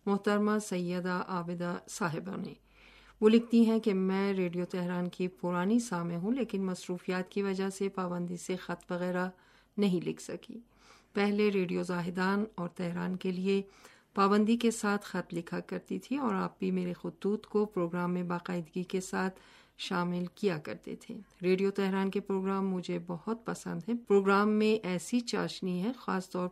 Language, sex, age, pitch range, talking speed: Urdu, female, 50-69, 180-205 Hz, 165 wpm